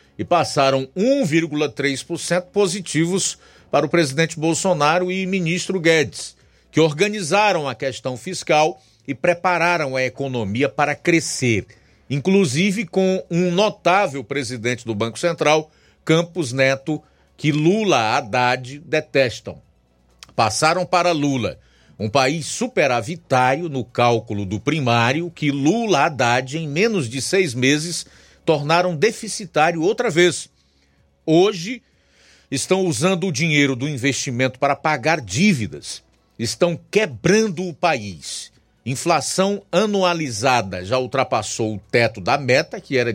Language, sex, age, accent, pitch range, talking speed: Portuguese, male, 50-69, Brazilian, 130-180 Hz, 115 wpm